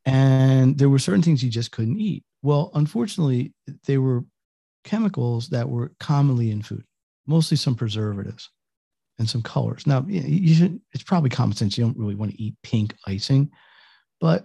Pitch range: 115-150 Hz